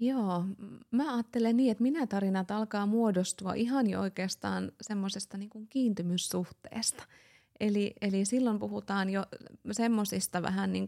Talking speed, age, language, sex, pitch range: 120 wpm, 20-39, Finnish, female, 175-205 Hz